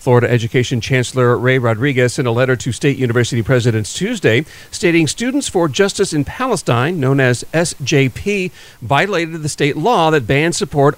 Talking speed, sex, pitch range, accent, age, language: 160 wpm, male, 125-165 Hz, American, 50-69, English